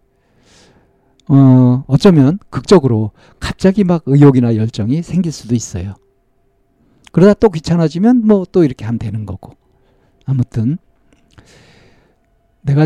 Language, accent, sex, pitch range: Korean, native, male, 110-145 Hz